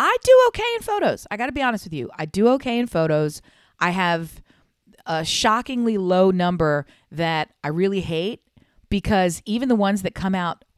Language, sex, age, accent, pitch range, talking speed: English, female, 40-59, American, 170-215 Hz, 190 wpm